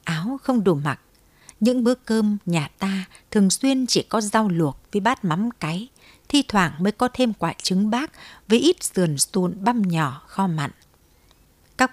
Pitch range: 165-220 Hz